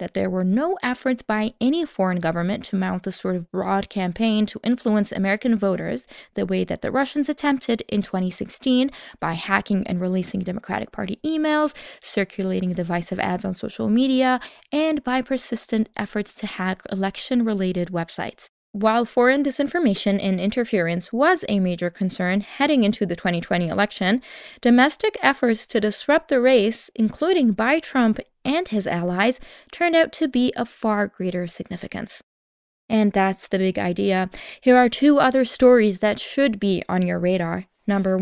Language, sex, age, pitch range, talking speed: English, female, 20-39, 195-255 Hz, 155 wpm